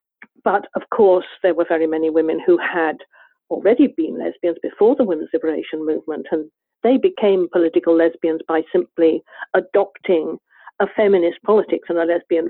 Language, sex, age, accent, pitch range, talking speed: English, female, 50-69, British, 170-225 Hz, 155 wpm